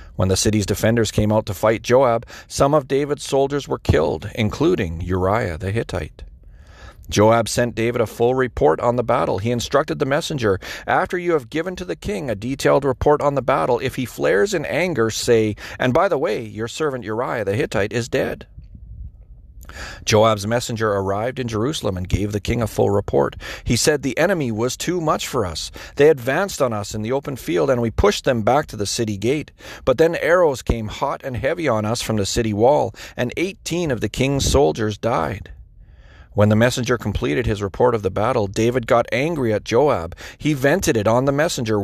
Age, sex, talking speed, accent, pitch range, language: 40-59, male, 200 wpm, American, 105-135 Hz, English